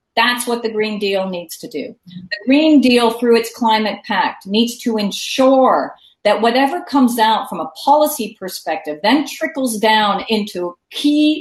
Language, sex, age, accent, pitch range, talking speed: English, female, 40-59, American, 200-260 Hz, 165 wpm